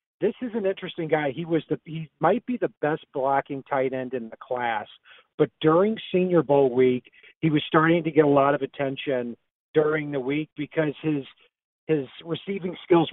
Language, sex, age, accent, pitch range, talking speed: English, male, 50-69, American, 135-160 Hz, 185 wpm